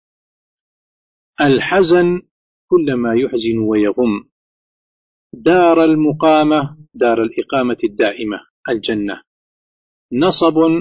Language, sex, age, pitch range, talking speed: Arabic, male, 50-69, 120-190 Hz, 65 wpm